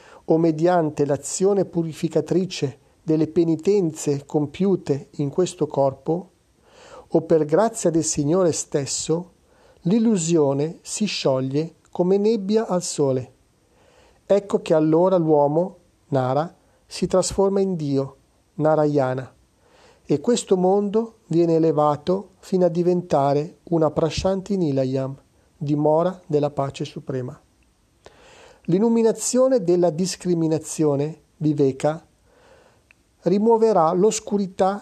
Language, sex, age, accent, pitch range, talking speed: Italian, male, 40-59, native, 150-190 Hz, 90 wpm